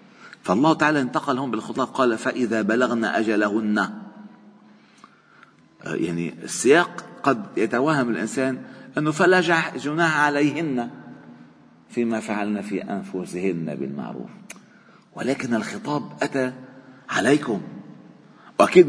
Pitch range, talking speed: 105-165 Hz, 85 wpm